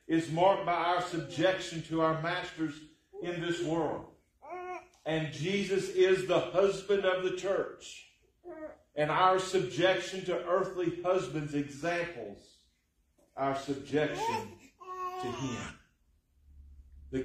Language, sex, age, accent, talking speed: English, male, 40-59, American, 110 wpm